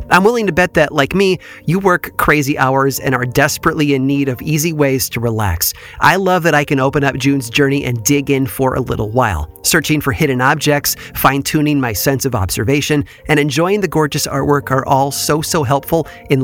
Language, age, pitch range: English, 30-49, 120-155 Hz